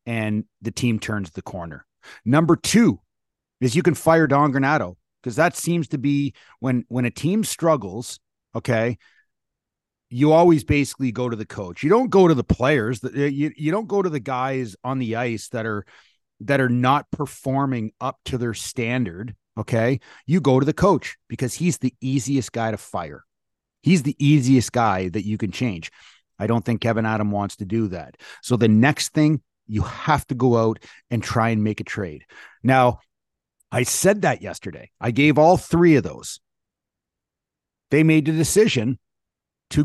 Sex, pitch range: male, 115-150 Hz